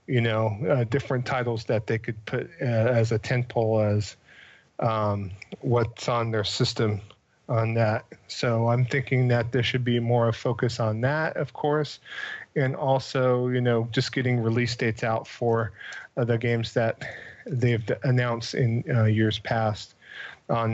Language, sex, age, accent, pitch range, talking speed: English, male, 40-59, American, 115-130 Hz, 160 wpm